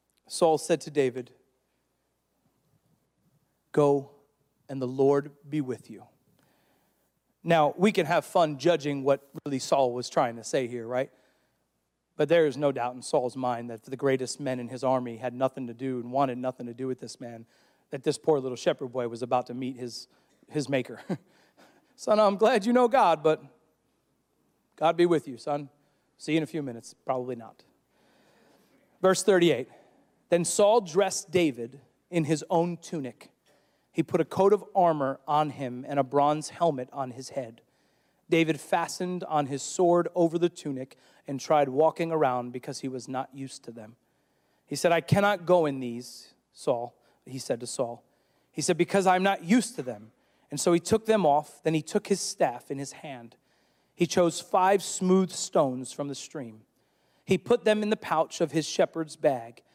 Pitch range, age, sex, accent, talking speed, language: 130-170 Hz, 40-59, male, American, 185 wpm, English